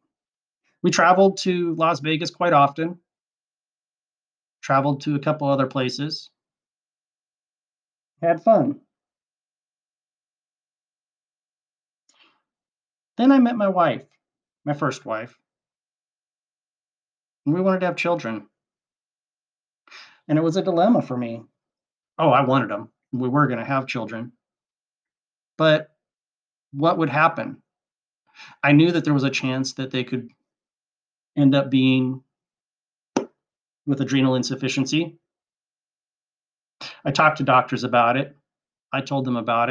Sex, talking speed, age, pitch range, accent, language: male, 115 wpm, 30-49, 130-170 Hz, American, English